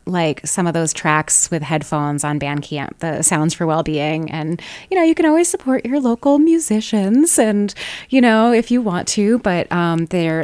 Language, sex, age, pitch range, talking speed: English, female, 20-39, 160-210 Hz, 190 wpm